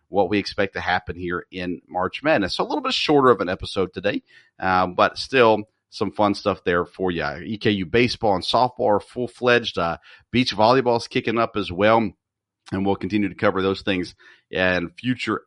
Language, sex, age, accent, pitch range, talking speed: English, male, 40-59, American, 90-115 Hz, 190 wpm